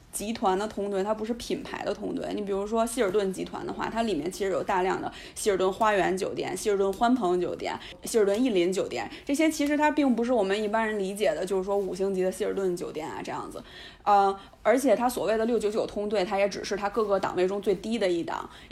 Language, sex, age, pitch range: Chinese, female, 20-39, 195-235 Hz